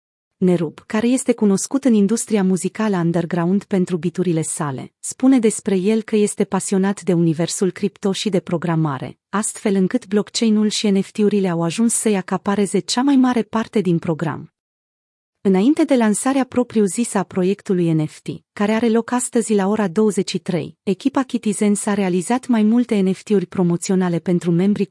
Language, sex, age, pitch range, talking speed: Romanian, female, 30-49, 180-225 Hz, 150 wpm